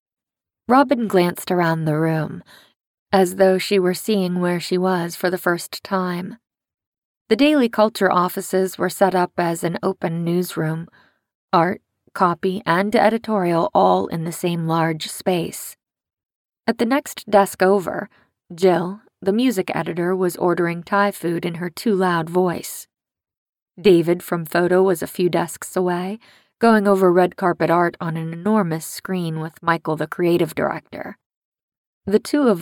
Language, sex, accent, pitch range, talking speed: English, female, American, 170-200 Hz, 150 wpm